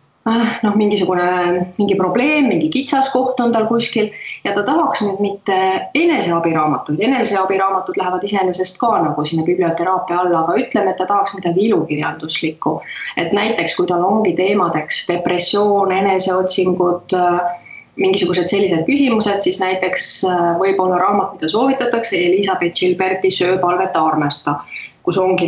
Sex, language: female, English